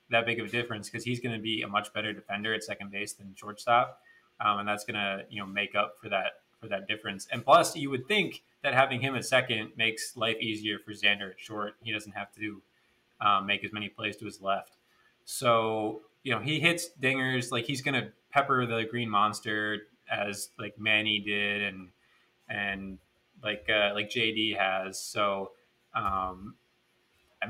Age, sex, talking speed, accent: 20-39, male, 195 wpm, American